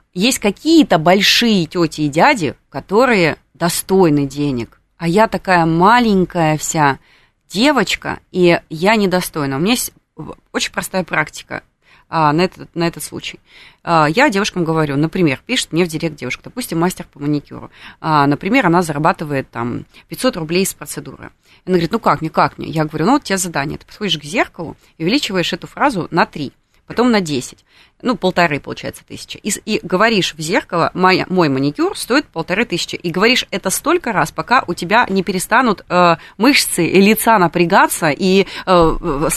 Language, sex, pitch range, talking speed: Russian, female, 160-205 Hz, 165 wpm